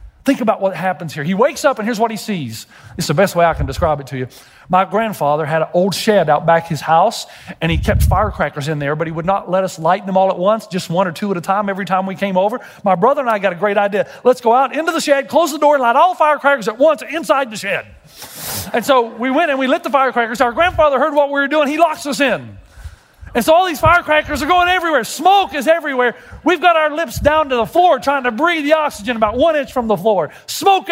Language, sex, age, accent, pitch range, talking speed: English, male, 40-59, American, 170-280 Hz, 270 wpm